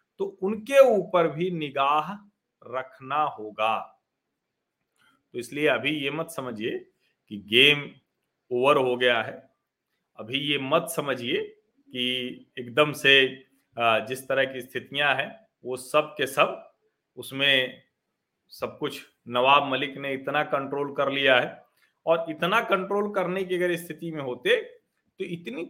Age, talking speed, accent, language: 40-59, 135 wpm, native, Hindi